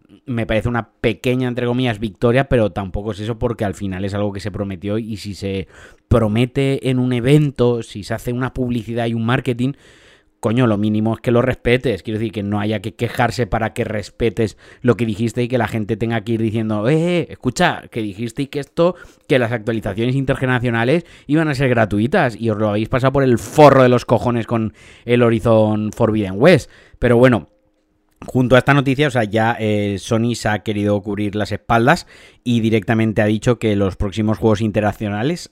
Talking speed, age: 200 wpm, 30-49